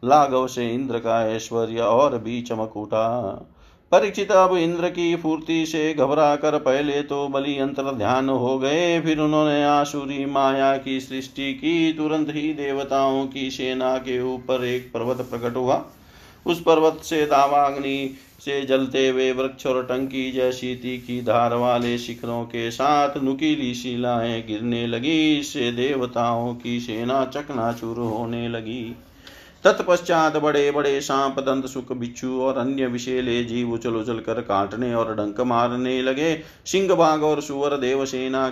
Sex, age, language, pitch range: male, 50-69, Hindi, 120-140 Hz